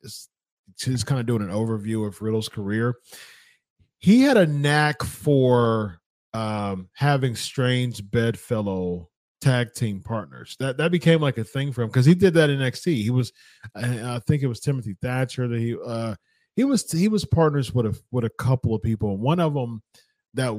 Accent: American